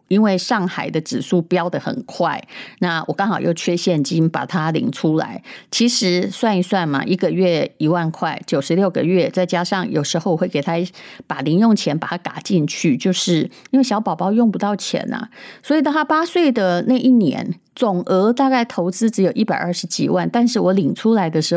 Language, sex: Chinese, female